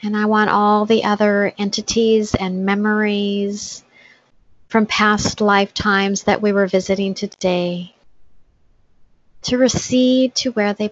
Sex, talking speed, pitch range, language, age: female, 120 wpm, 185-210 Hz, English, 30-49